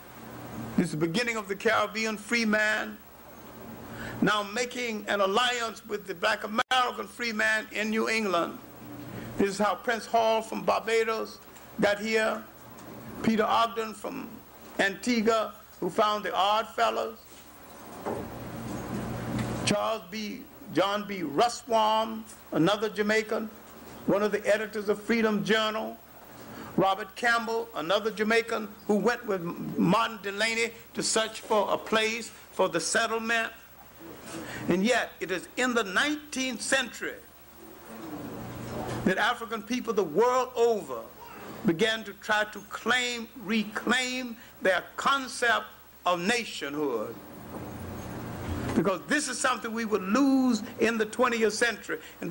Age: 60-79